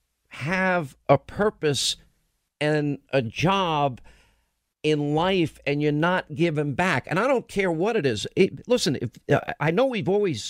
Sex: male